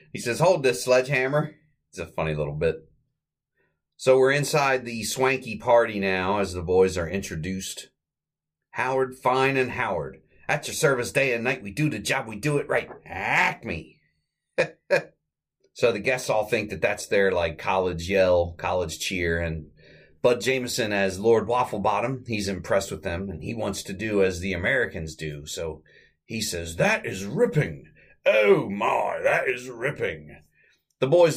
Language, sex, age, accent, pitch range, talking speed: English, male, 30-49, American, 85-130 Hz, 165 wpm